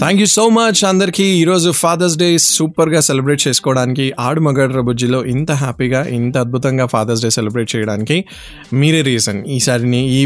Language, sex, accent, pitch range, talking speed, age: Telugu, male, native, 120-145 Hz, 145 wpm, 20-39